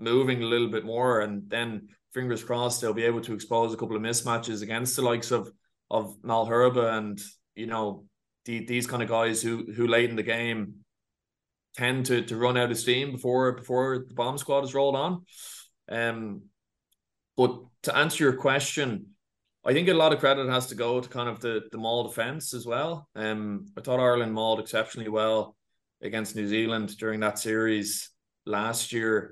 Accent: Irish